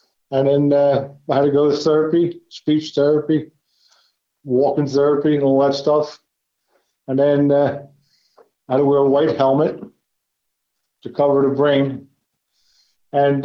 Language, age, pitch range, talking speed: English, 50-69, 135-150 Hz, 145 wpm